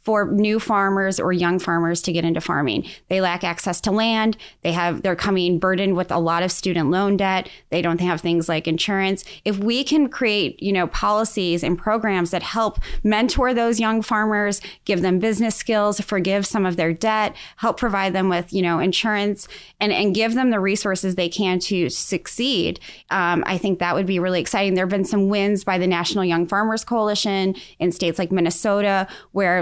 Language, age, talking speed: English, 20-39, 200 wpm